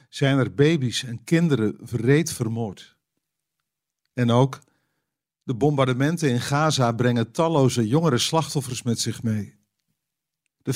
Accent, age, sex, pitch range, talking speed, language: Dutch, 50-69, male, 125-155 Hz, 115 wpm, Dutch